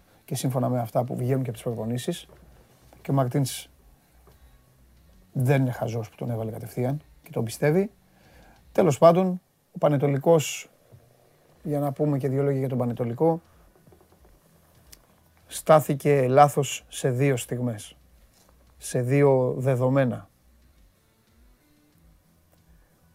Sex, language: male, Greek